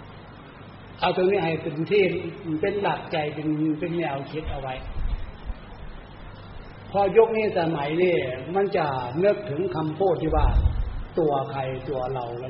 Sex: male